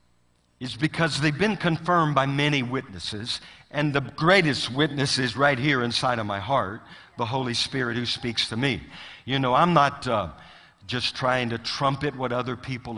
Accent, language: American, English